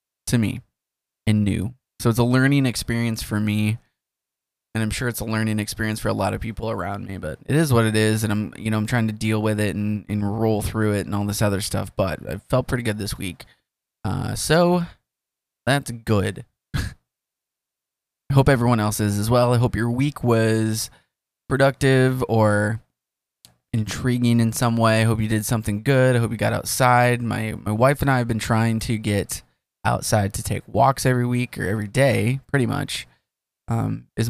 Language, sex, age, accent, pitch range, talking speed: English, male, 20-39, American, 105-125 Hz, 200 wpm